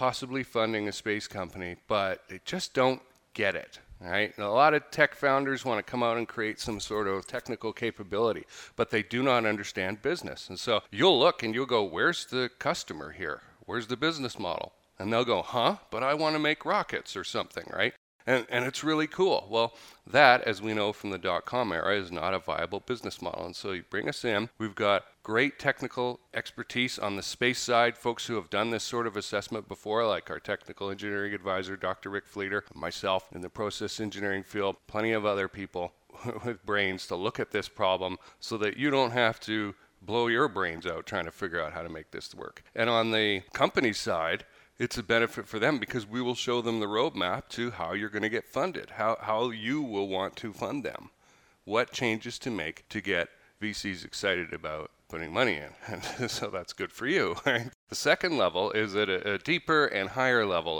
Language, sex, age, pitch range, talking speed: English, male, 40-59, 100-125 Hz, 210 wpm